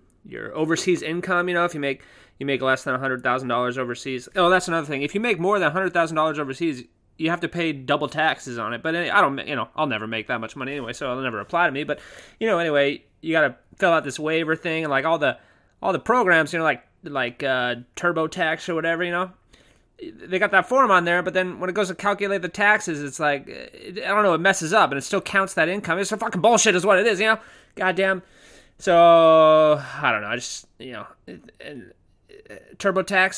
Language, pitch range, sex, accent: English, 140-195 Hz, male, American